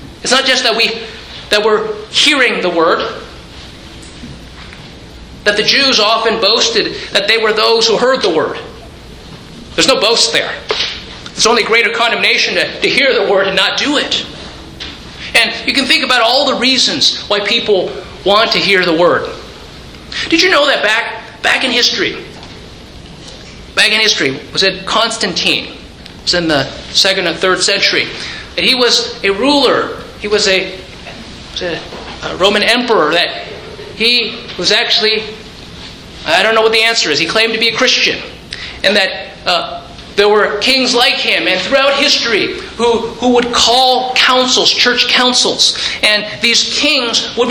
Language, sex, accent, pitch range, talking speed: English, male, American, 210-260 Hz, 160 wpm